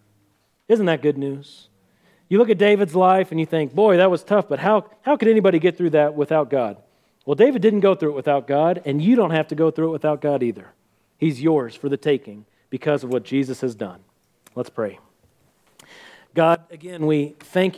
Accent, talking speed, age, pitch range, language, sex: American, 210 wpm, 40-59, 125-155 Hz, English, male